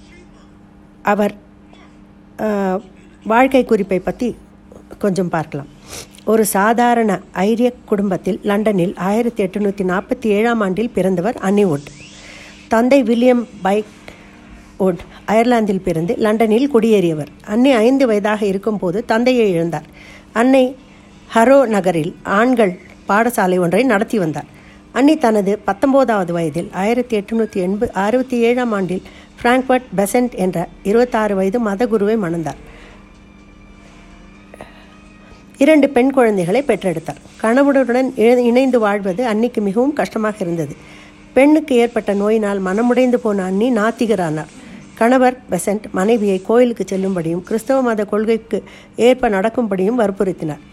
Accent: native